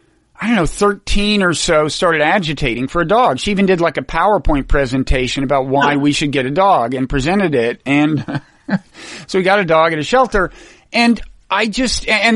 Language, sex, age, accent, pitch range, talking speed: English, male, 50-69, American, 140-195 Hz, 200 wpm